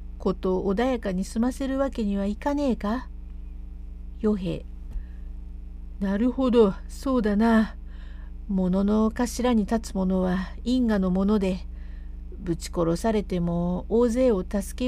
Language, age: Japanese, 50-69